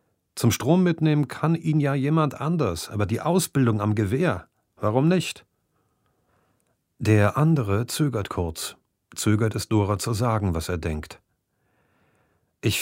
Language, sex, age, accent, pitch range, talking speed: German, male, 40-59, German, 95-140 Hz, 130 wpm